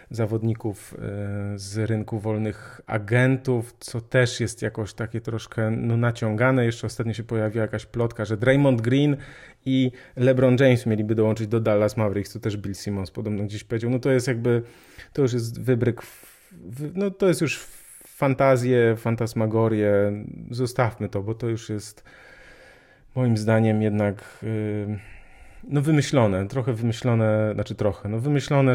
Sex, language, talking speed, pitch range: male, Polish, 145 wpm, 105-130 Hz